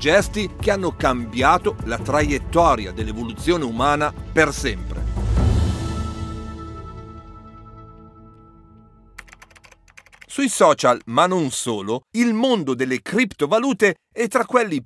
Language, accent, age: Italian, native, 50-69